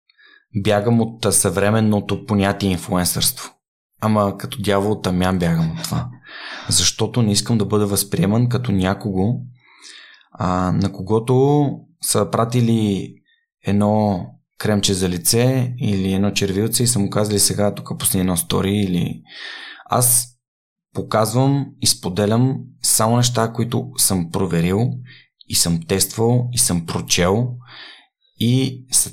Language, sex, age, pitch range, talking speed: Bulgarian, male, 20-39, 100-125 Hz, 125 wpm